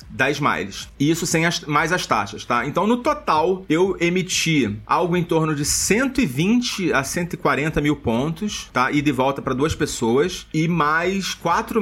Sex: male